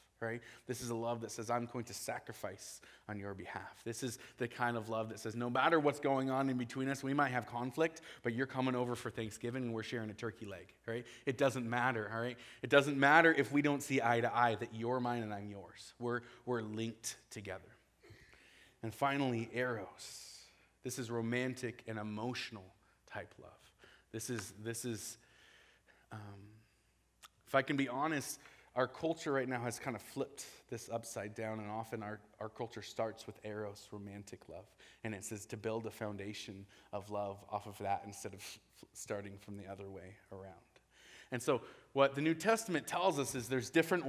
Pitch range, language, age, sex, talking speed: 110-140 Hz, English, 20-39, male, 195 wpm